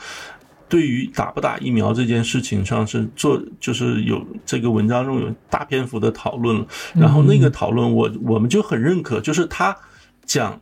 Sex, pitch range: male, 115-145 Hz